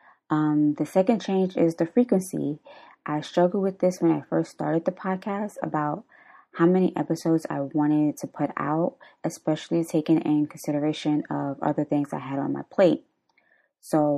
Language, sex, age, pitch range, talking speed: English, female, 20-39, 150-185 Hz, 165 wpm